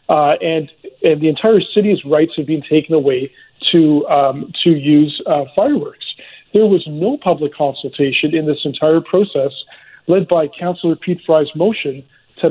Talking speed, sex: 160 wpm, male